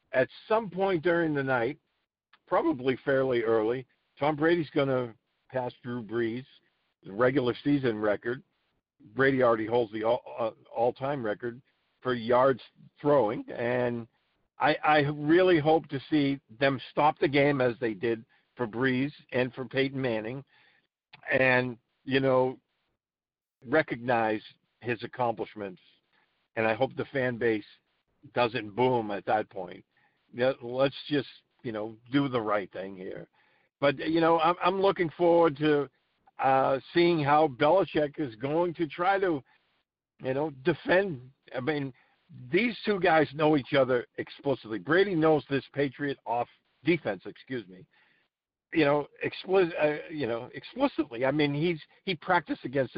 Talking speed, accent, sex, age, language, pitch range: 145 wpm, American, male, 50-69, English, 125-160 Hz